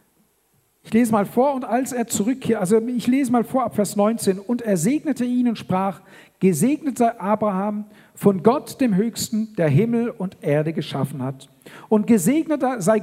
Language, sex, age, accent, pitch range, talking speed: German, male, 50-69, German, 180-240 Hz, 175 wpm